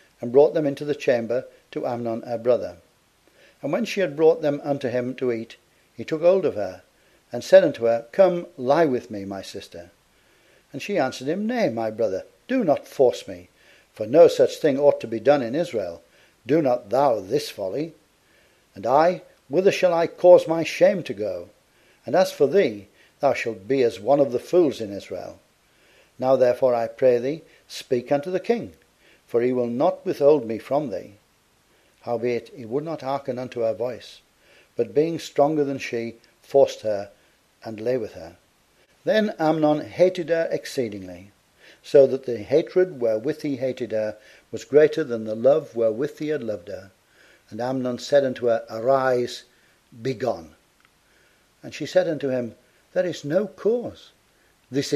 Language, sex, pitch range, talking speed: English, male, 120-165 Hz, 175 wpm